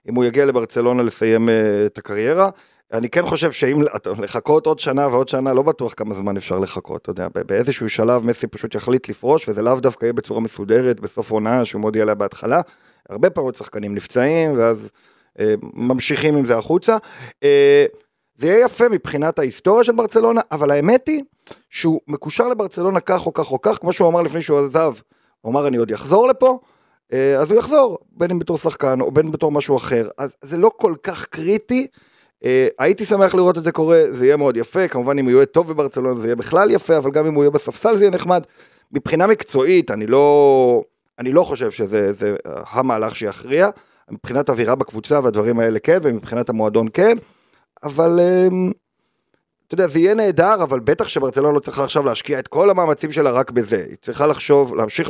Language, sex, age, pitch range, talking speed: Hebrew, male, 40-59, 120-180 Hz, 185 wpm